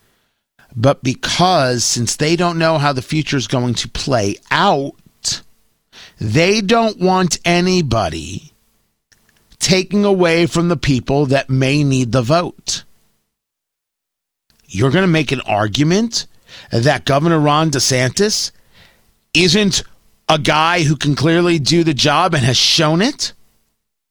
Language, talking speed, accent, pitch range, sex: English, 125 wpm, American, 120-170 Hz, male